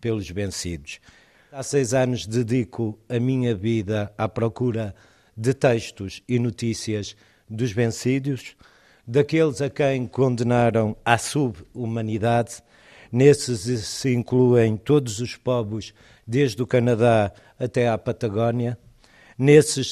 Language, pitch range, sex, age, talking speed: Portuguese, 110-125 Hz, male, 50-69, 110 wpm